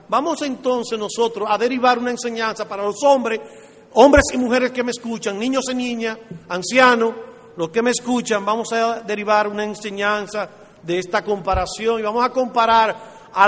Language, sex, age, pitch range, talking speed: Spanish, male, 40-59, 180-245 Hz, 165 wpm